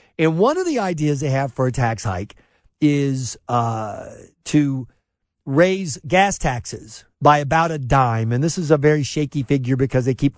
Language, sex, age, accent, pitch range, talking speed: English, male, 50-69, American, 115-170 Hz, 180 wpm